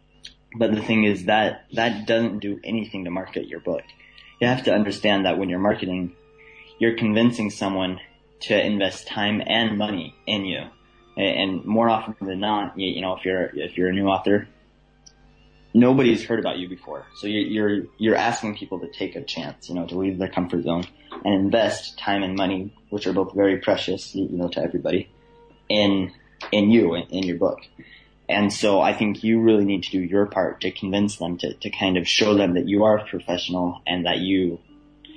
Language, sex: English, male